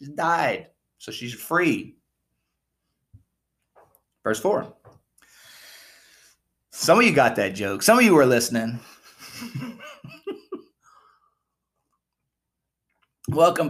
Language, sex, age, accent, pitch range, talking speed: English, male, 30-49, American, 125-175 Hz, 80 wpm